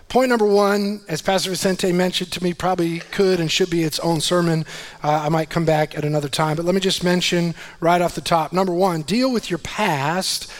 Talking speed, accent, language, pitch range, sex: 225 wpm, American, English, 180-255 Hz, male